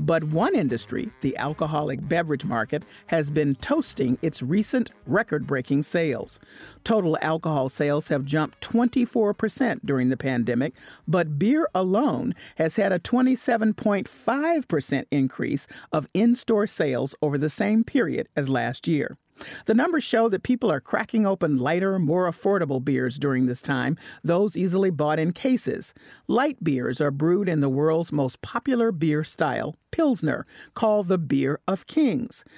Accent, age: American, 50-69